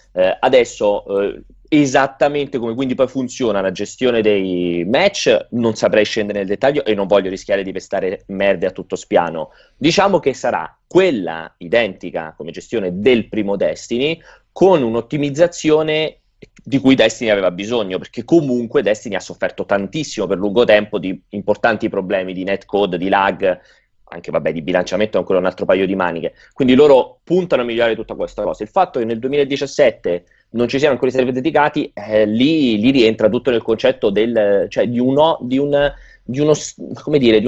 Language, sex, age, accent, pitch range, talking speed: Italian, male, 30-49, native, 100-140 Hz, 160 wpm